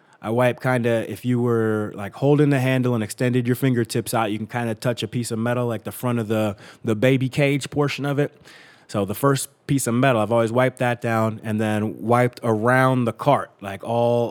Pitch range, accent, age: 115-140 Hz, American, 20-39